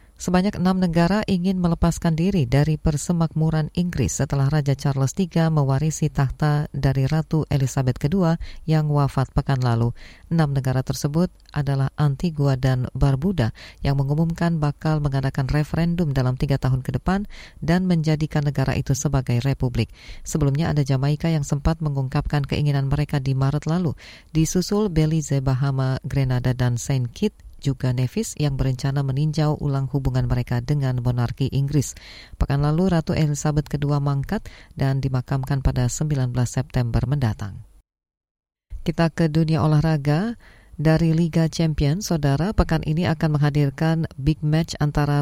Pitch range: 135-160 Hz